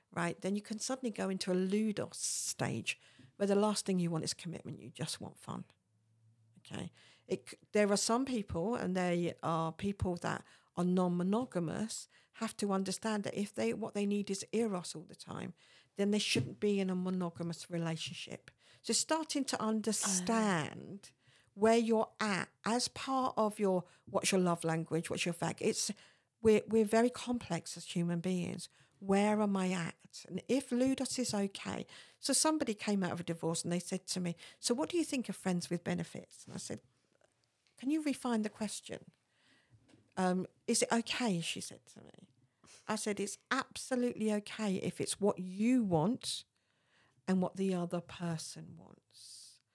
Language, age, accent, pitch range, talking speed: English, 50-69, British, 170-220 Hz, 175 wpm